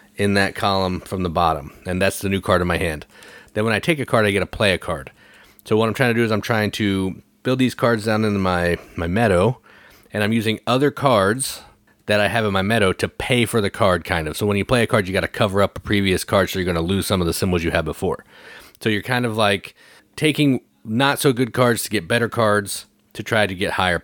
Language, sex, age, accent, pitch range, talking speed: English, male, 30-49, American, 90-110 Hz, 260 wpm